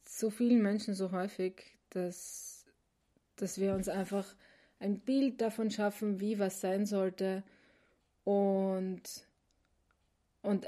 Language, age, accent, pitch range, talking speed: German, 20-39, German, 190-215 Hz, 110 wpm